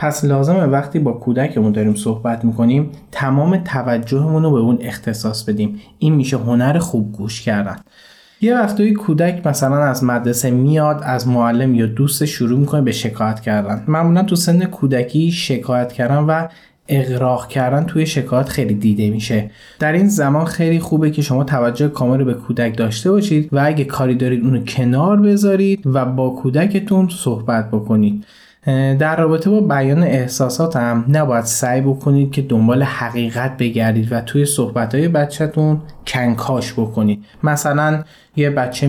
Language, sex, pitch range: Persian, male, 120-150 Hz